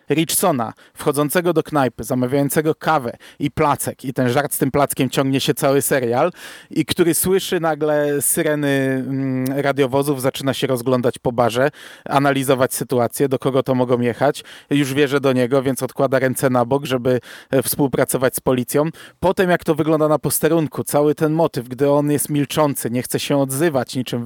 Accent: native